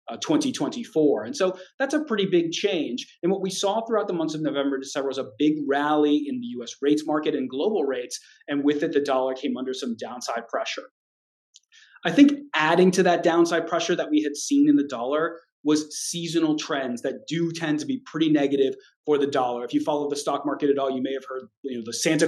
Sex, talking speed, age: male, 225 wpm, 30-49